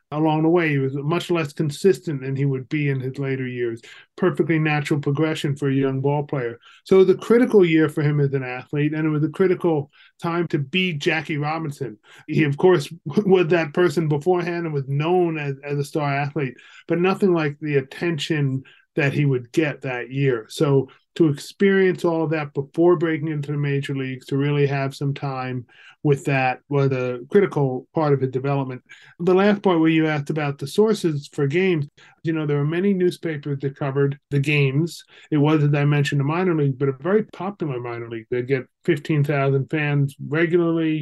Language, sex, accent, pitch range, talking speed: English, male, American, 140-165 Hz, 200 wpm